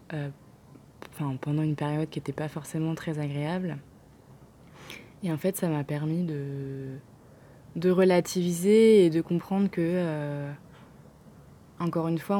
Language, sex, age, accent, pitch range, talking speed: French, female, 20-39, French, 150-175 Hz, 130 wpm